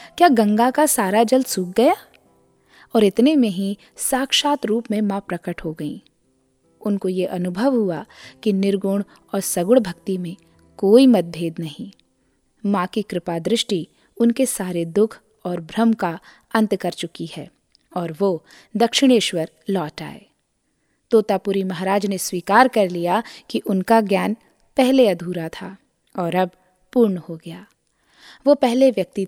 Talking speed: 145 wpm